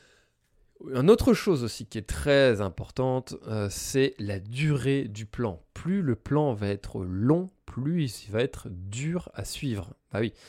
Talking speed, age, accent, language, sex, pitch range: 165 wpm, 20-39, French, French, male, 105-135 Hz